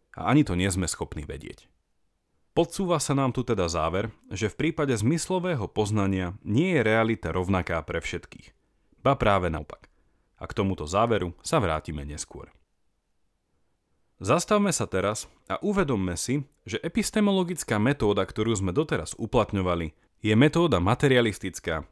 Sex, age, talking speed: male, 30-49, 135 wpm